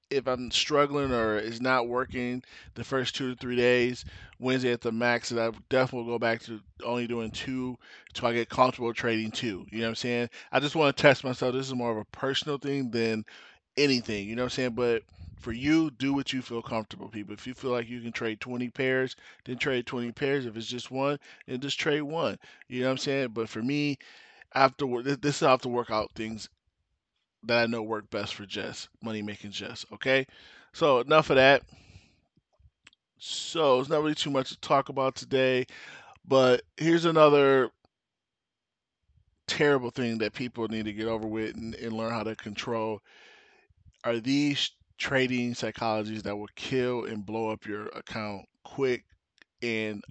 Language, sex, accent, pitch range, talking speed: English, male, American, 110-130 Hz, 195 wpm